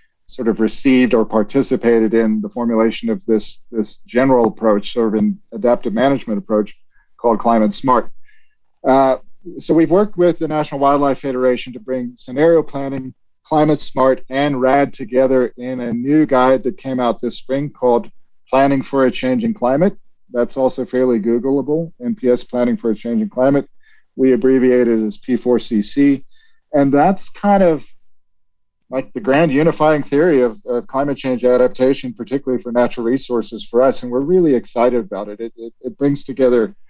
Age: 40-59